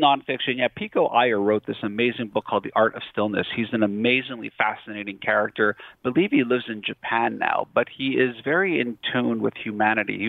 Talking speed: 200 wpm